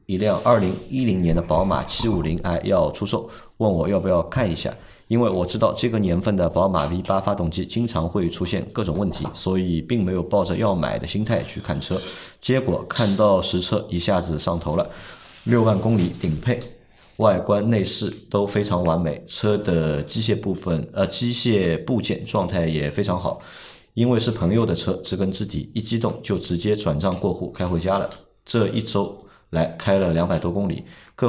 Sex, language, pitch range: male, Chinese, 85-110 Hz